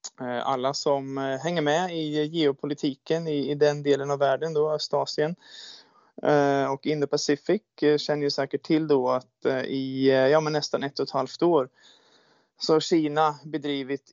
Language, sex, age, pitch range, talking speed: Swedish, male, 20-39, 135-155 Hz, 150 wpm